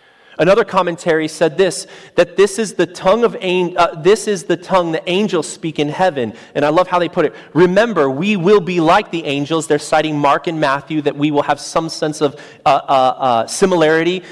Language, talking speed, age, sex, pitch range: English, 210 wpm, 30-49, male, 150-180 Hz